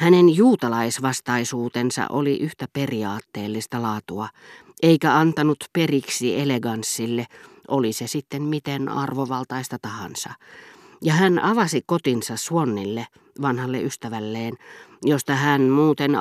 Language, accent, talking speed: Finnish, native, 95 wpm